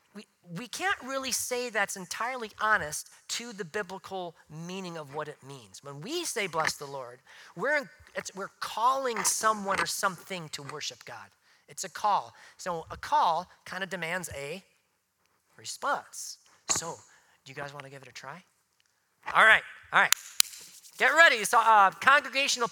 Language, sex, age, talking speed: English, male, 40-59, 170 wpm